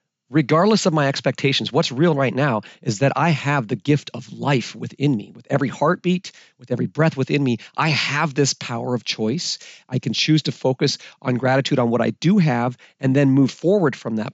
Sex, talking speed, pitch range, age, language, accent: male, 210 wpm, 120-155 Hz, 40-59, English, American